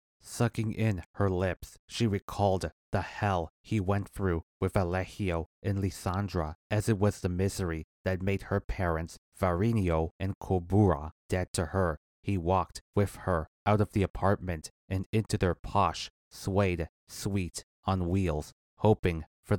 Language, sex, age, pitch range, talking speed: English, male, 30-49, 85-100 Hz, 145 wpm